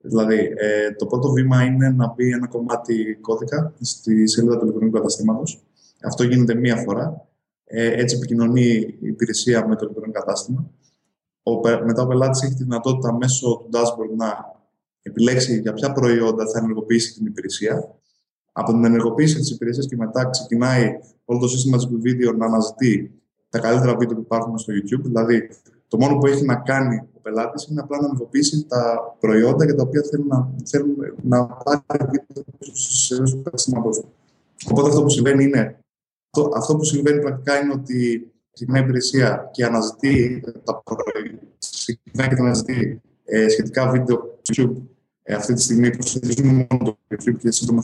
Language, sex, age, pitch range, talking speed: Greek, male, 20-39, 115-130 Hz, 150 wpm